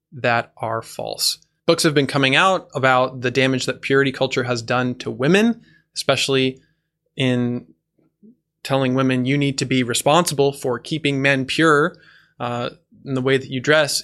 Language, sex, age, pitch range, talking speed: English, male, 20-39, 125-150 Hz, 165 wpm